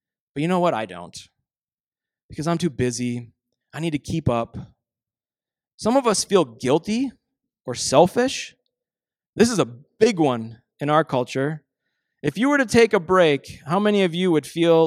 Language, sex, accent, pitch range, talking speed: English, male, American, 155-235 Hz, 175 wpm